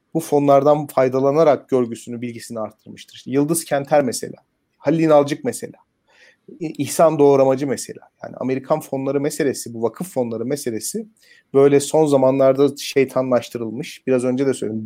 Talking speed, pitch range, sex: 130 wpm, 135-170 Hz, male